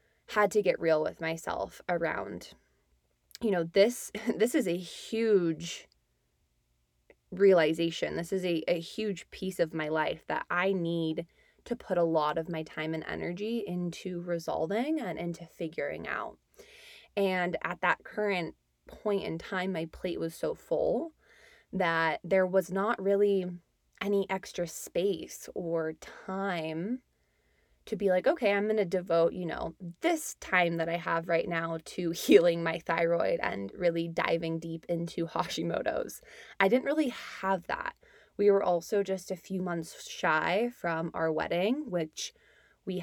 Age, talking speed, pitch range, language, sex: 20-39, 150 wpm, 165-200 Hz, English, female